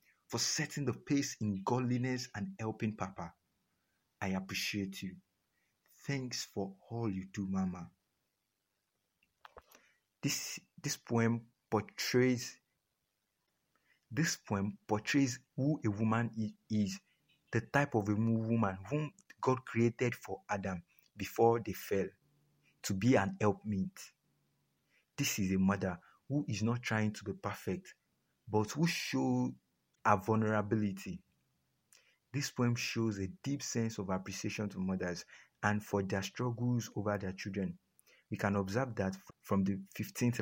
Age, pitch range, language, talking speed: 50-69, 95-120 Hz, English, 130 wpm